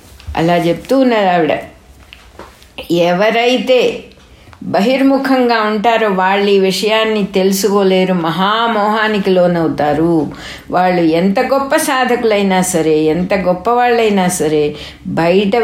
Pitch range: 170-235 Hz